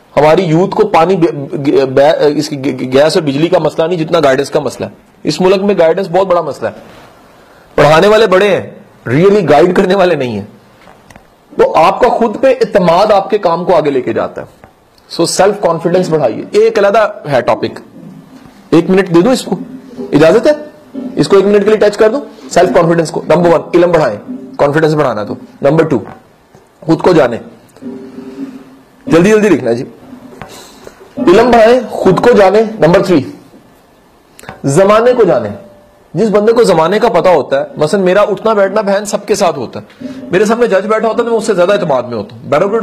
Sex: male